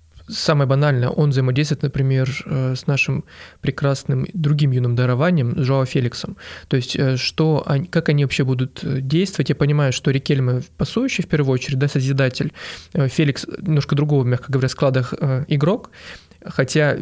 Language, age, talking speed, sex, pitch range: Russian, 20-39, 145 wpm, male, 135-155 Hz